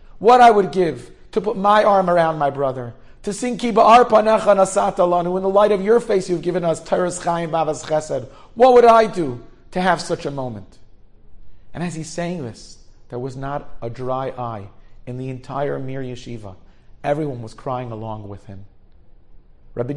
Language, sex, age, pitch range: English, male, 40-59, 110-145 Hz